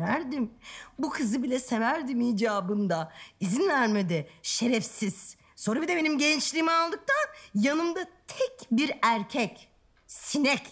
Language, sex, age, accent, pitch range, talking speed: Turkish, female, 50-69, native, 185-285 Hz, 110 wpm